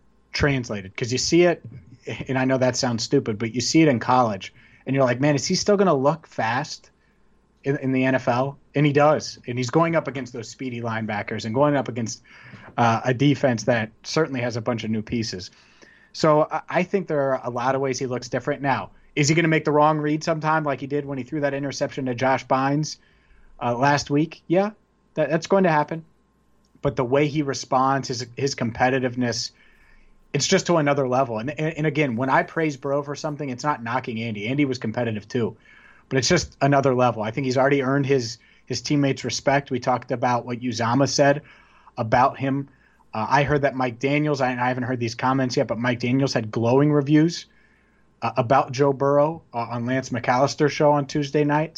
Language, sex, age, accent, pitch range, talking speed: English, male, 30-49, American, 125-150 Hz, 210 wpm